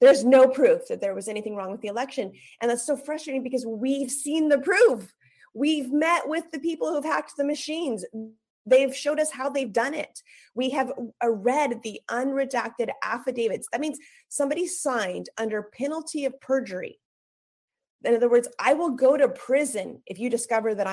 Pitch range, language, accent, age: 215-270 Hz, English, American, 30-49